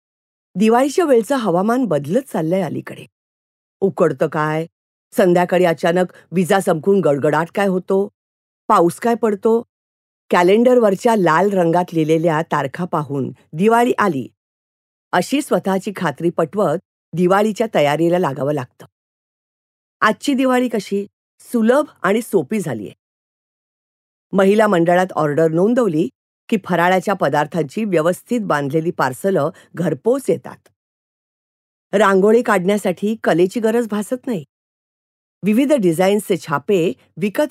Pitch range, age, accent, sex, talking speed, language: 170-220 Hz, 50-69, Indian, female, 100 wpm, English